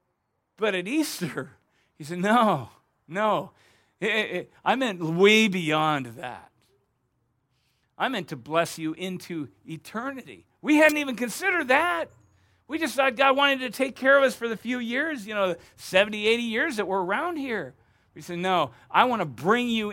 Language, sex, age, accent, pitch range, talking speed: English, male, 40-59, American, 155-215 Hz, 165 wpm